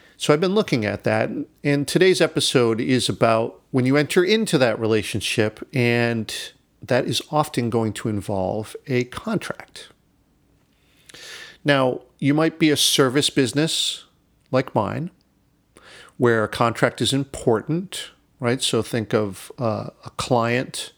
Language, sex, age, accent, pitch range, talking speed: English, male, 40-59, American, 110-145 Hz, 135 wpm